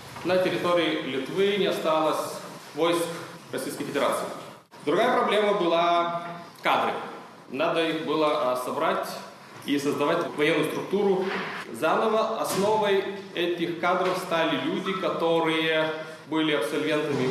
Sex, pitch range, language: male, 150-190 Hz, Ukrainian